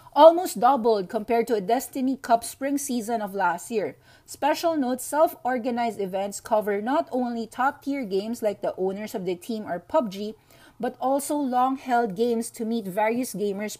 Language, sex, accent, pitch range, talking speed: English, female, Filipino, 200-260 Hz, 160 wpm